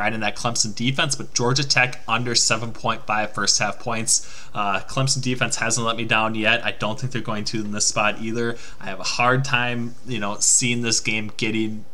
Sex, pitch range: male, 105-125 Hz